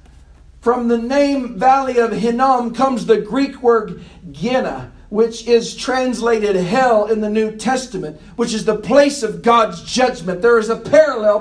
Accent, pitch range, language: American, 210-285 Hz, English